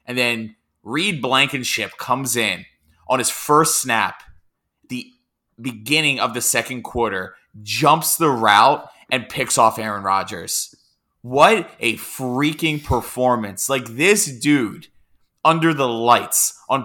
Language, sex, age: English, male, 20-39